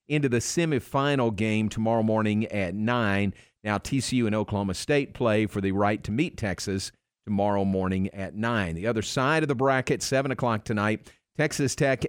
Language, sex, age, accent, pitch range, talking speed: English, male, 50-69, American, 105-130 Hz, 175 wpm